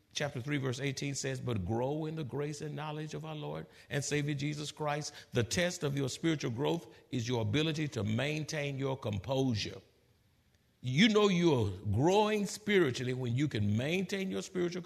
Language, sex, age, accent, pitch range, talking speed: English, male, 60-79, American, 120-185 Hz, 175 wpm